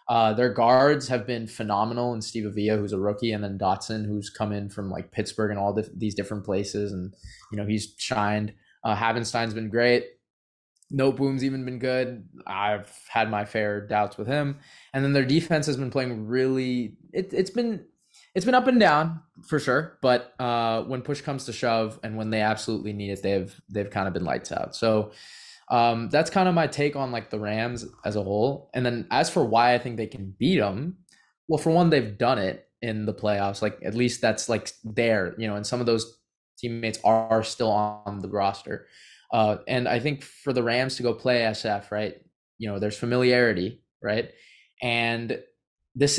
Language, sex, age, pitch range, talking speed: English, male, 20-39, 105-130 Hz, 200 wpm